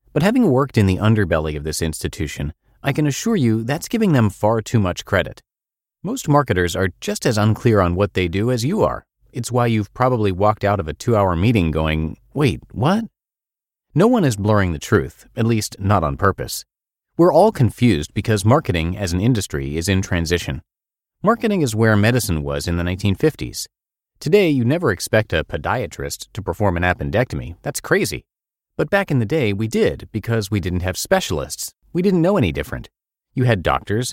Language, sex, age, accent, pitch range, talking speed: English, male, 30-49, American, 90-130 Hz, 190 wpm